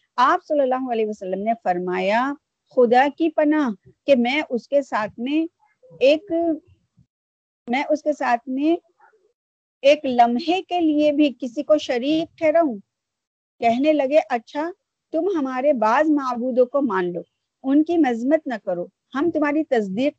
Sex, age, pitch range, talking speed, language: female, 50-69, 230-310 Hz, 150 wpm, Urdu